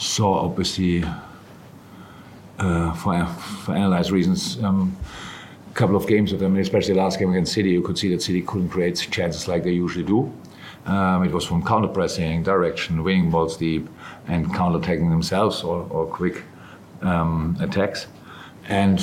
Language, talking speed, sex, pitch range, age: English, 165 wpm, male, 90-105 Hz, 50-69